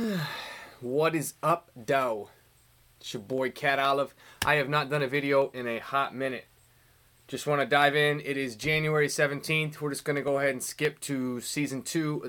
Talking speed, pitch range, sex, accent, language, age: 190 wpm, 120-145 Hz, male, American, English, 20-39